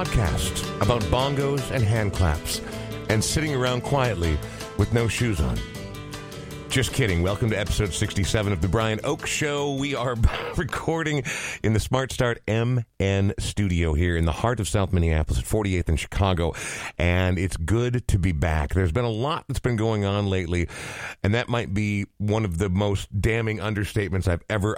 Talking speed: 175 wpm